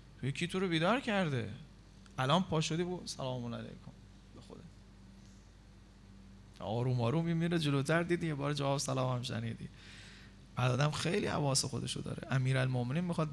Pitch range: 110-175 Hz